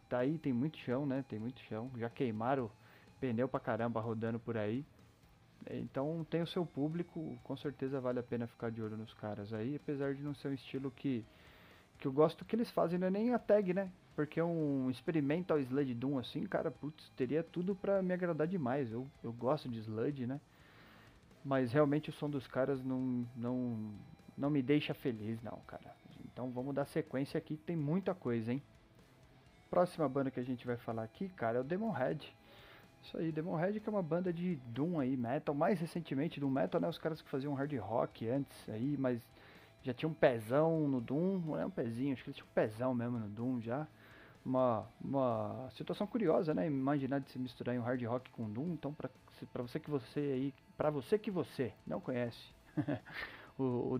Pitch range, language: 120-155 Hz, Portuguese